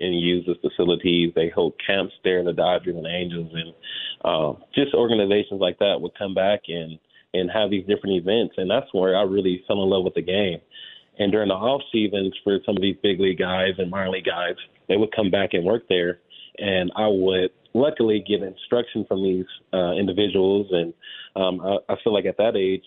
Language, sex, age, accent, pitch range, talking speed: English, male, 30-49, American, 95-120 Hz, 215 wpm